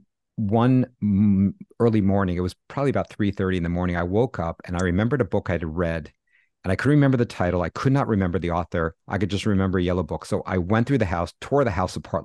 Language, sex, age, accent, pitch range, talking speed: English, male, 50-69, American, 90-110 Hz, 260 wpm